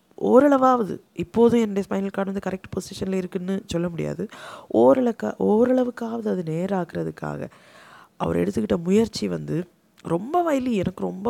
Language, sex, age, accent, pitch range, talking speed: Tamil, female, 20-39, native, 175-220 Hz, 120 wpm